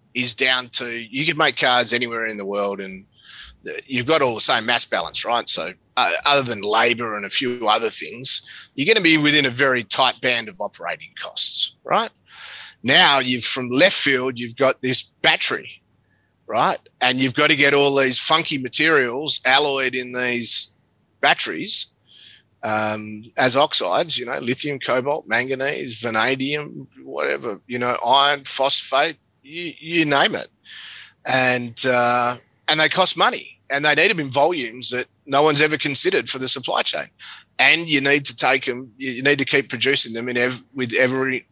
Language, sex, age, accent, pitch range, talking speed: English, male, 30-49, Australian, 115-140 Hz, 175 wpm